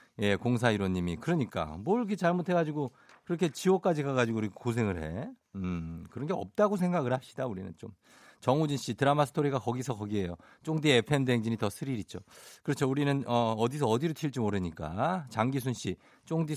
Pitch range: 100-150 Hz